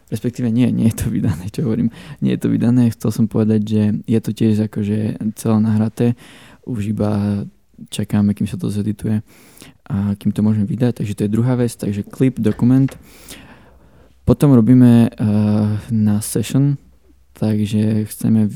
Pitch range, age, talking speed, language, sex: 105-120 Hz, 20-39, 150 wpm, Slovak, male